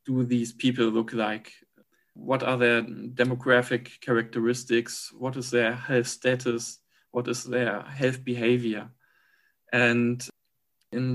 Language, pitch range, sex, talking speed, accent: English, 120-135 Hz, male, 120 wpm, German